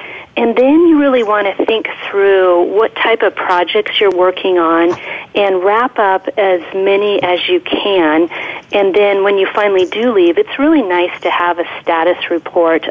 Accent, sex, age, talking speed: American, female, 40-59, 175 wpm